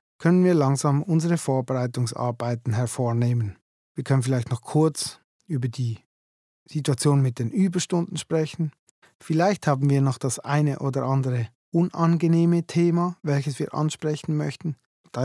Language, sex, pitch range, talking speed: German, male, 130-170 Hz, 130 wpm